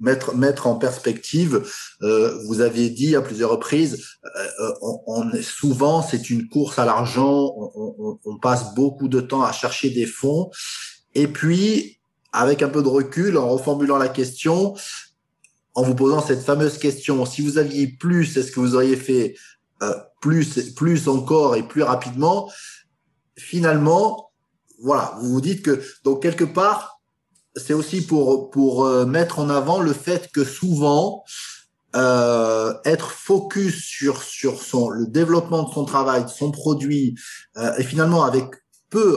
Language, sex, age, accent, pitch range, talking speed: English, male, 20-39, French, 130-170 Hz, 160 wpm